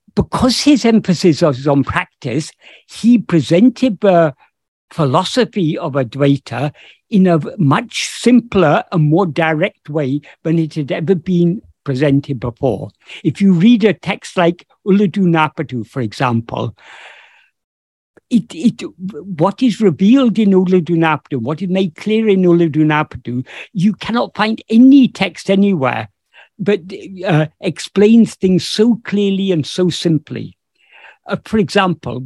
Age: 60-79